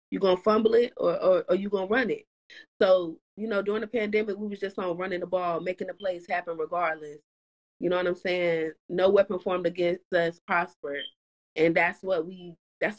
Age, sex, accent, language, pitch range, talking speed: 30-49, female, American, English, 165-195 Hz, 210 wpm